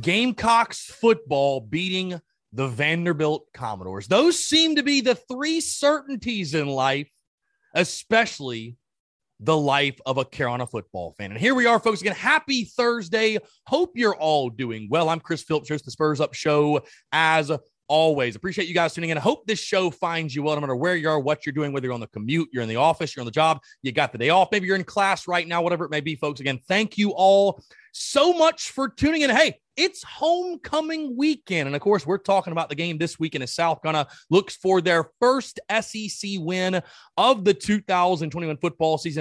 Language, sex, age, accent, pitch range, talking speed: English, male, 30-49, American, 150-215 Hz, 200 wpm